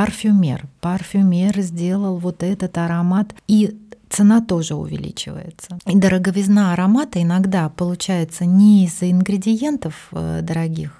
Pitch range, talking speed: 160-200 Hz, 110 wpm